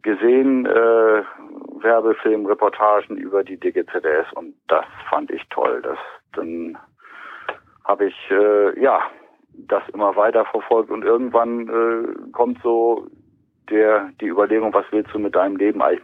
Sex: male